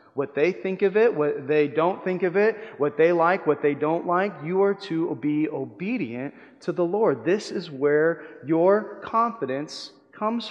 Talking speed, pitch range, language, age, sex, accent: 185 wpm, 145-200 Hz, English, 30-49, male, American